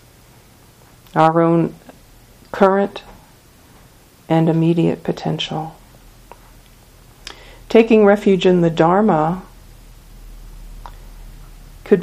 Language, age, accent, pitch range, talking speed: English, 50-69, American, 160-185 Hz, 60 wpm